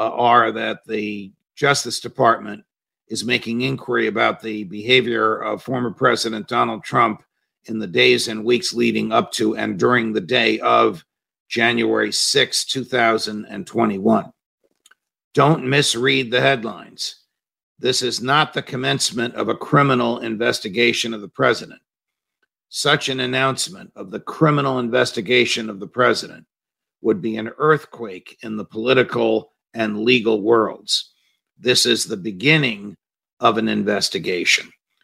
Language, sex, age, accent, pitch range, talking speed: English, male, 50-69, American, 115-135 Hz, 130 wpm